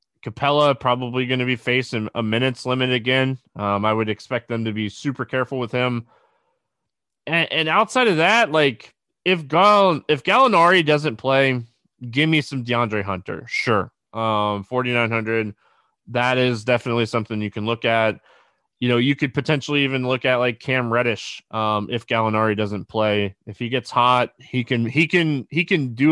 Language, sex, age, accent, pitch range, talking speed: English, male, 20-39, American, 115-145 Hz, 175 wpm